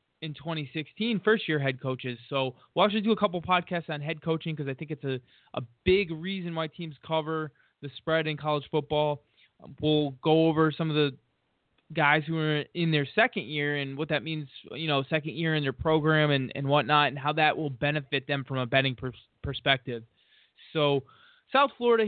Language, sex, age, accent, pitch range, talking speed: English, male, 20-39, American, 145-180 Hz, 195 wpm